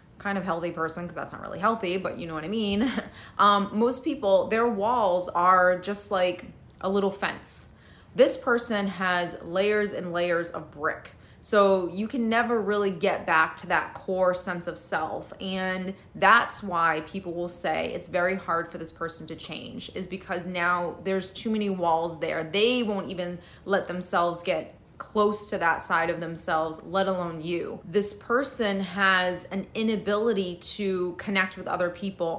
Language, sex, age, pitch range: English, female, 30-49, 175-215 Hz